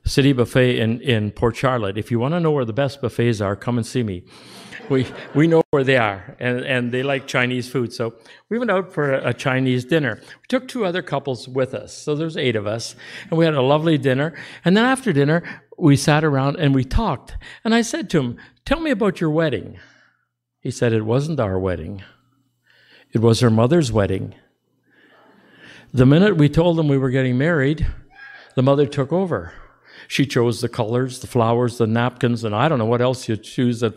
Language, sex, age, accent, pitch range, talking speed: English, male, 60-79, American, 115-155 Hz, 210 wpm